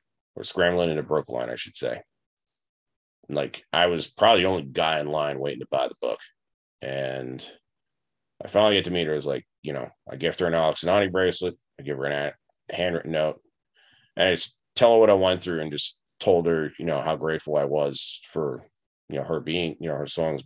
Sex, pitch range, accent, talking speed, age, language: male, 70-85 Hz, American, 220 wpm, 30-49, English